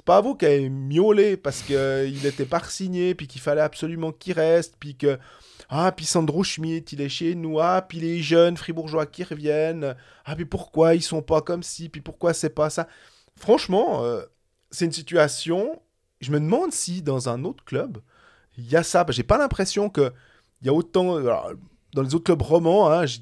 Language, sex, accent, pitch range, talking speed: French, male, French, 135-175 Hz, 210 wpm